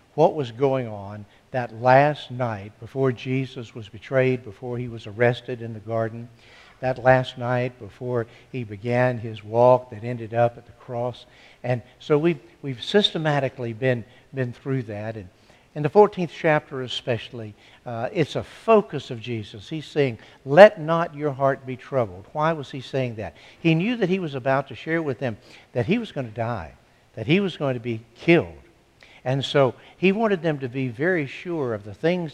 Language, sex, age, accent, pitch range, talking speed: English, male, 60-79, American, 120-150 Hz, 185 wpm